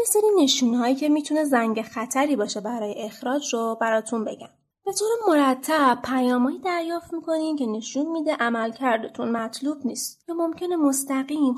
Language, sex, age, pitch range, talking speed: Persian, female, 30-49, 225-295 Hz, 130 wpm